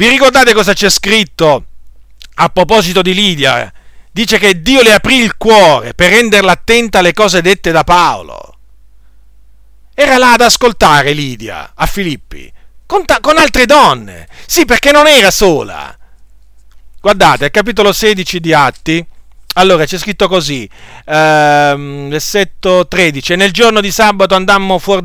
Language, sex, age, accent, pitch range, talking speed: Italian, male, 40-59, native, 160-240 Hz, 140 wpm